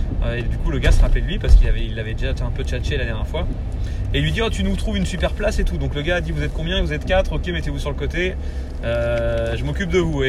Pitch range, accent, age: 65-80 Hz, French, 30-49